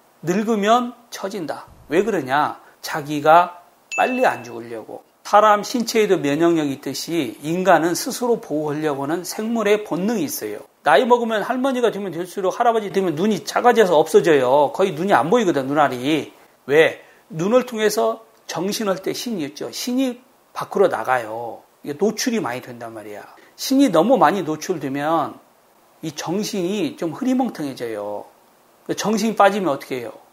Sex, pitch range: male, 170-255 Hz